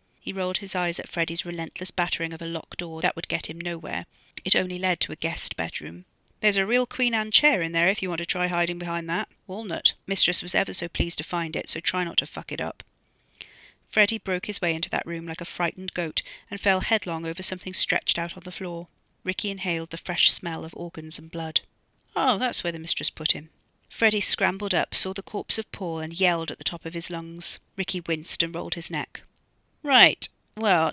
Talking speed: 225 wpm